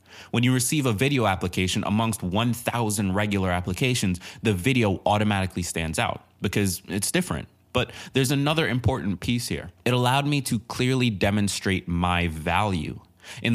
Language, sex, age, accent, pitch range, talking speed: English, male, 20-39, American, 95-125 Hz, 145 wpm